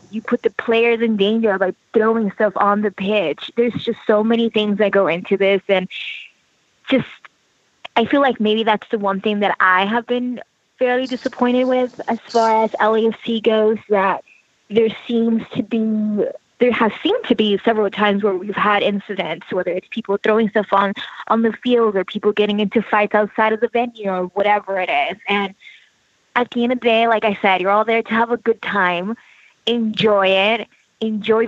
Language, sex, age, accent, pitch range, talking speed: English, female, 20-39, American, 190-230 Hz, 195 wpm